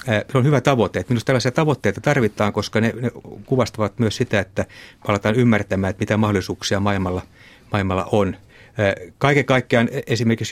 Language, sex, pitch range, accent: Finnish, male, 100-120 Hz, native